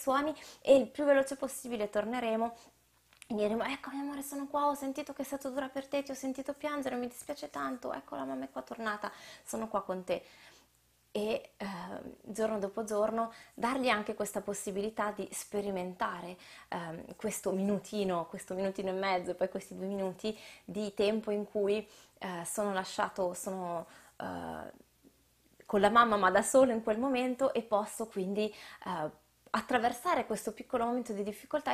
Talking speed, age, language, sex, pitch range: 170 wpm, 20-39, Italian, female, 190-245 Hz